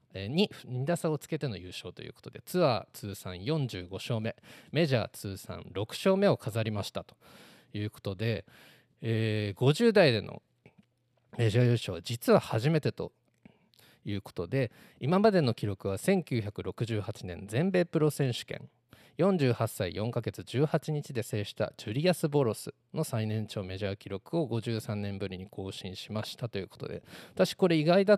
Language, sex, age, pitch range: Japanese, male, 20-39, 105-145 Hz